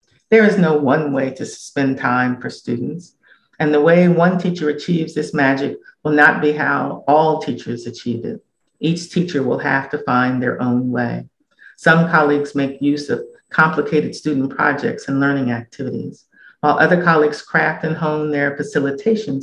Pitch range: 135-150 Hz